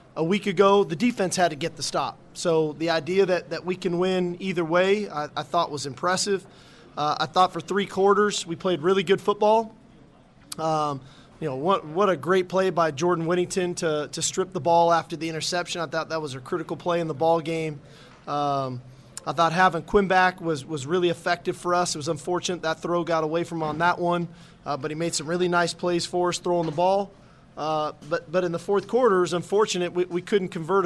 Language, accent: English, American